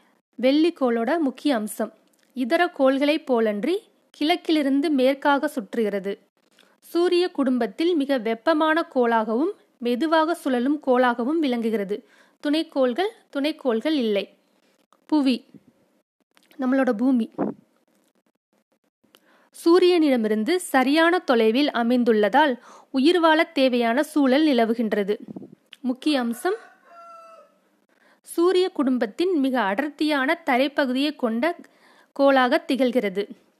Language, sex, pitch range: Tamil, female, 245-315 Hz